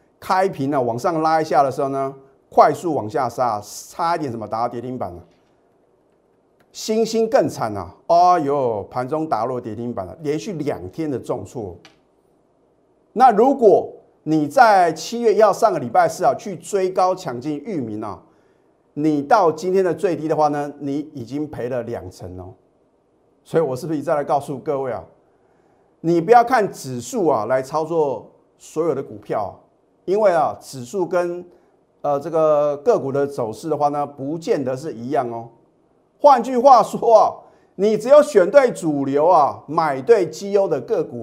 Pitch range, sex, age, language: 130-185 Hz, male, 30-49, Chinese